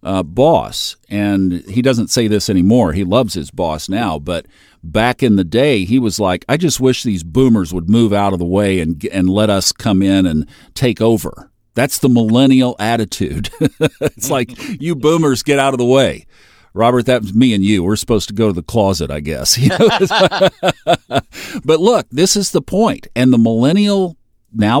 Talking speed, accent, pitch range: 190 wpm, American, 95-130 Hz